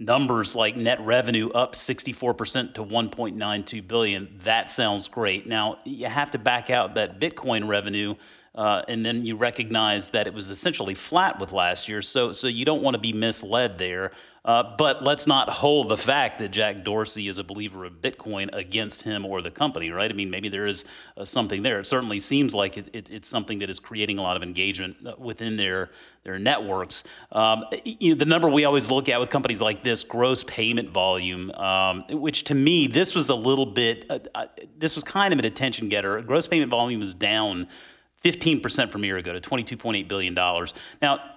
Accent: American